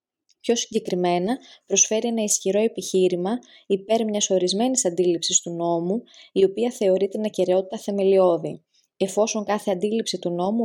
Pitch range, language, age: 180-215 Hz, Greek, 20-39